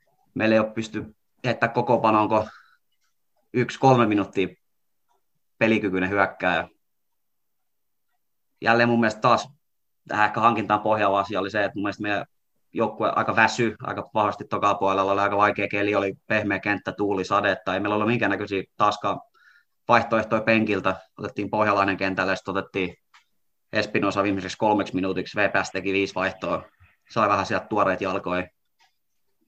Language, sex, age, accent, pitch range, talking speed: Finnish, male, 30-49, native, 100-115 Hz, 135 wpm